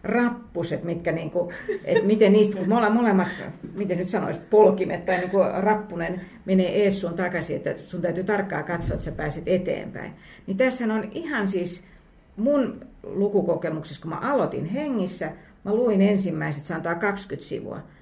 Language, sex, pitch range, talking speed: Finnish, female, 175-240 Hz, 150 wpm